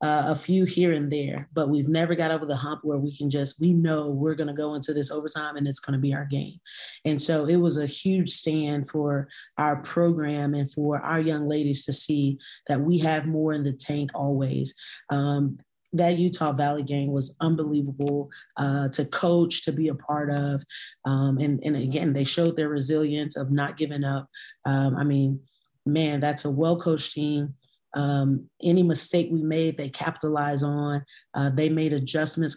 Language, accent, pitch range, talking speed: English, American, 145-155 Hz, 195 wpm